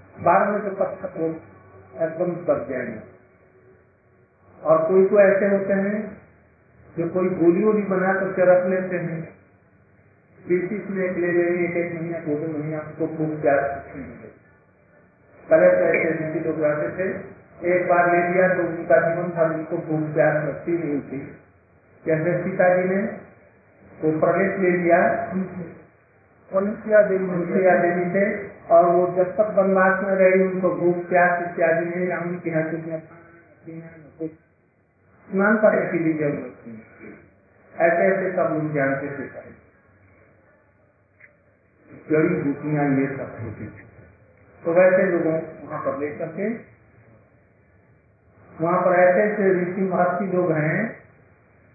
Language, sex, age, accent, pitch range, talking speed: Hindi, male, 50-69, native, 150-185 Hz, 90 wpm